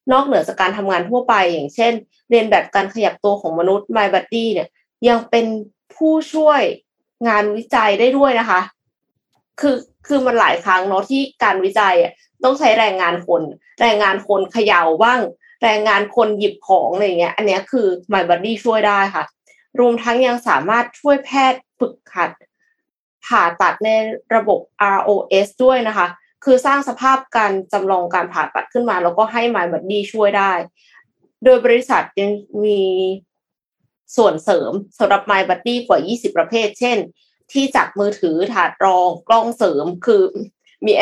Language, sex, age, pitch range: Thai, female, 20-39, 190-245 Hz